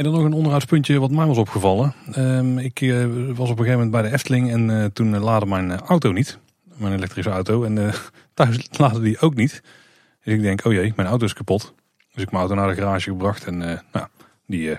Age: 30-49